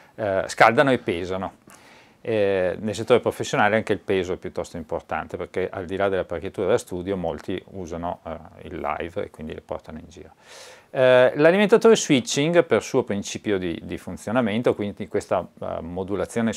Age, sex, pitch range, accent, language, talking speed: 50-69, male, 95-125 Hz, native, Italian, 165 wpm